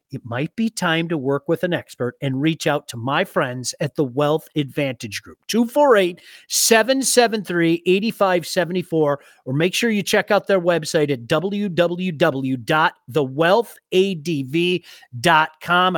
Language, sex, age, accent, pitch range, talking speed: English, male, 40-59, American, 140-185 Hz, 115 wpm